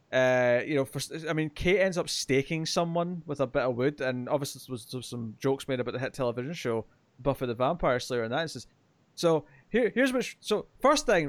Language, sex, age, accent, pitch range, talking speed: English, male, 20-39, British, 135-180 Hz, 235 wpm